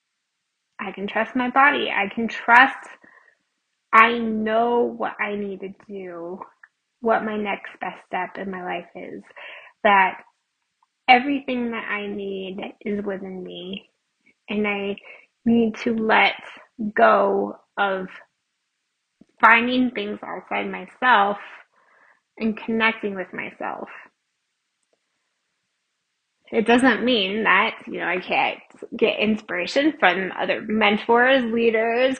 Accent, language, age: American, English, 20-39